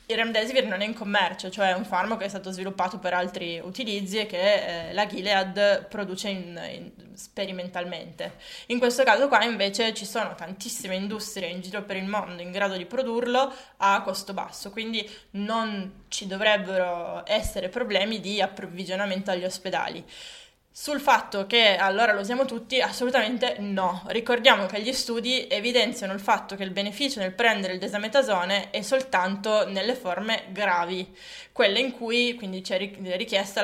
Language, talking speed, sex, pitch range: Italian, 155 wpm, female, 190-230 Hz